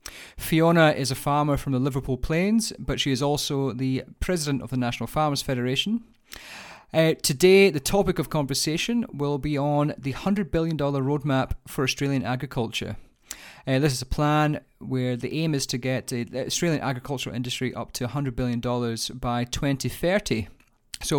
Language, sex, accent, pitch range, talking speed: English, male, British, 120-145 Hz, 160 wpm